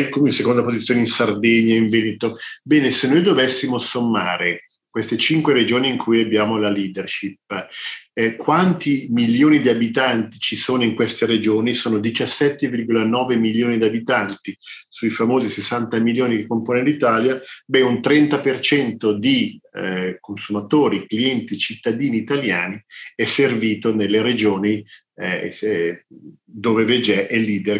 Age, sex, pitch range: 40-59, male, 105-125 Hz